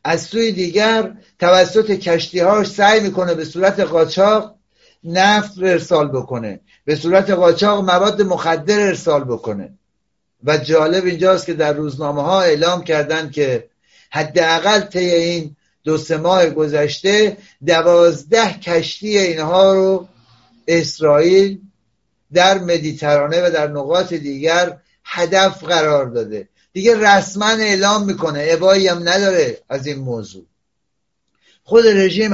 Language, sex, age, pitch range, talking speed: Persian, male, 60-79, 160-200 Hz, 115 wpm